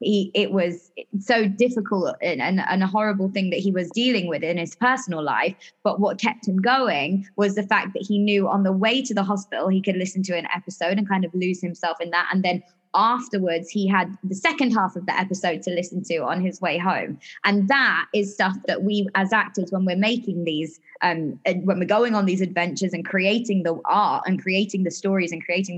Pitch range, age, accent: 185-215 Hz, 20-39, British